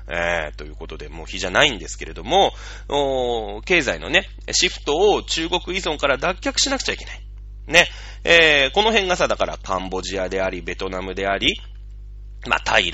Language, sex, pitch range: Japanese, male, 100-150 Hz